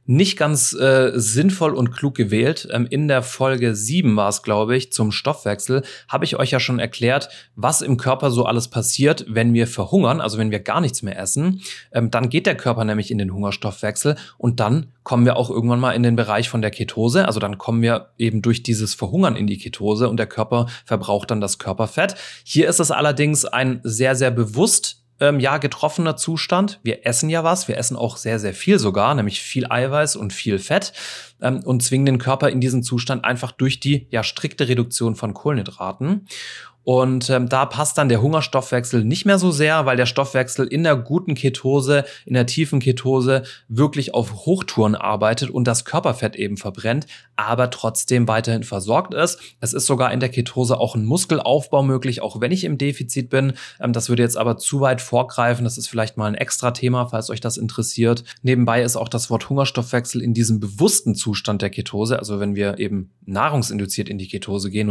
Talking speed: 200 wpm